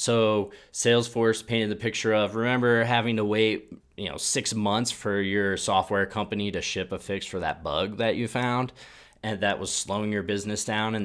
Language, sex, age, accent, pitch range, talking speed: English, male, 20-39, American, 100-115 Hz, 195 wpm